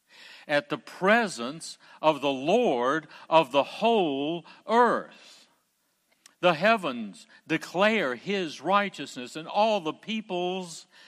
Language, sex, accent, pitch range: English, male, American, 130-190 Hz